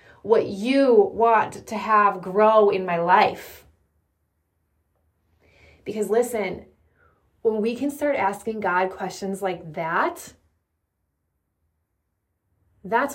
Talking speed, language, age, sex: 95 wpm, English, 20-39, female